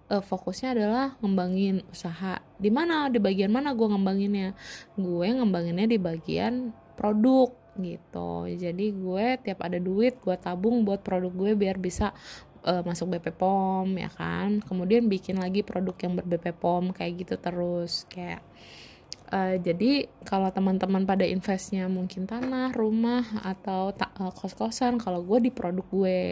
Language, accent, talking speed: Indonesian, native, 145 wpm